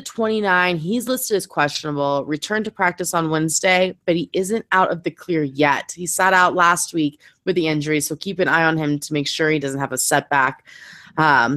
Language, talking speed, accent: English, 215 wpm, American